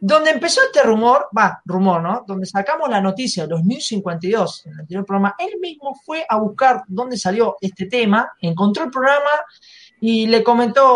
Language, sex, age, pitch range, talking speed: Spanish, male, 20-39, 195-255 Hz, 165 wpm